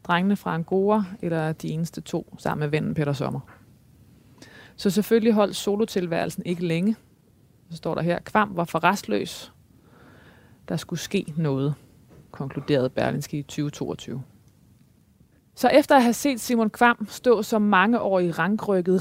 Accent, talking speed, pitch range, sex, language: native, 145 wpm, 160-205 Hz, female, Danish